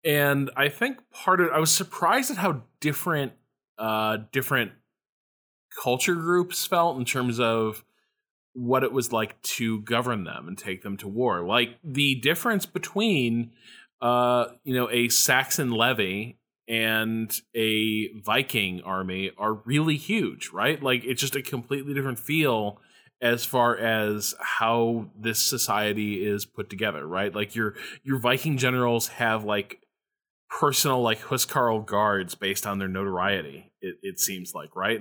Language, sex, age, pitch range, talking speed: English, male, 20-39, 110-140 Hz, 145 wpm